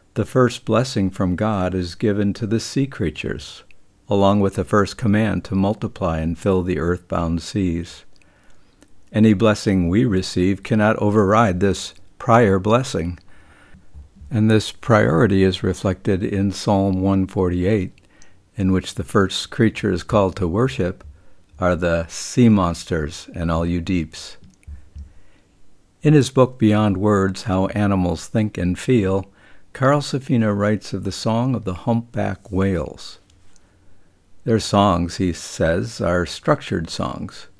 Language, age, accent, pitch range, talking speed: English, 60-79, American, 90-110 Hz, 130 wpm